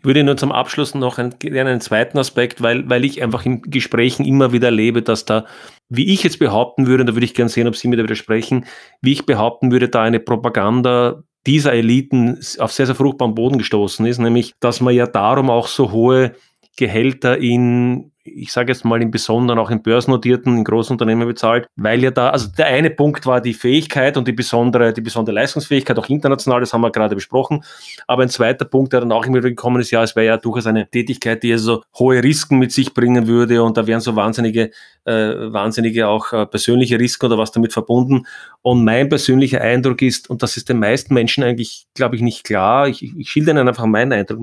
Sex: male